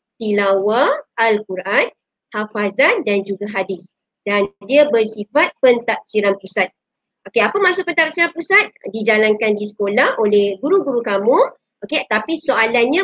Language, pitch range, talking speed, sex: Malay, 195-255 Hz, 115 wpm, male